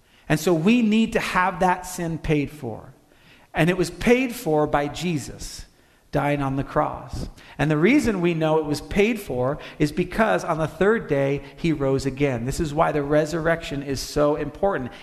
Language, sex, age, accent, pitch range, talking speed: English, male, 40-59, American, 145-185 Hz, 190 wpm